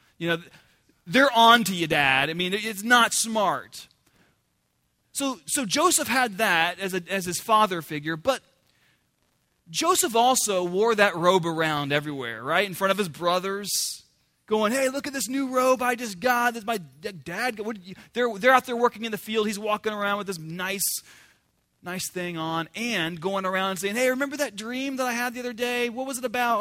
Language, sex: English, male